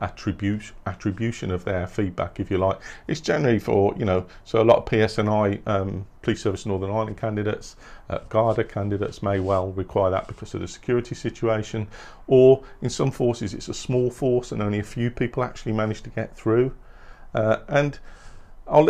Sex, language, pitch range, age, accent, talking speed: male, English, 100-120 Hz, 40-59, British, 180 wpm